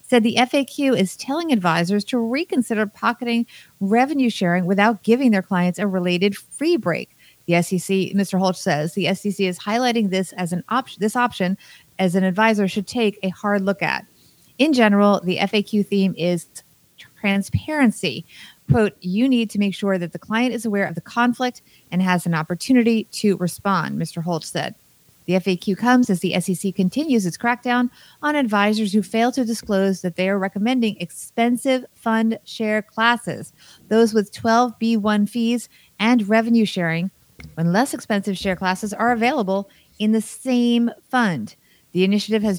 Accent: American